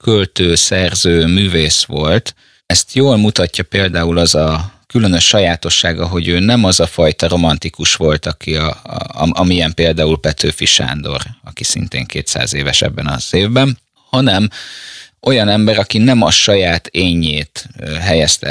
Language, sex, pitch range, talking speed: Hungarian, male, 80-105 Hz, 140 wpm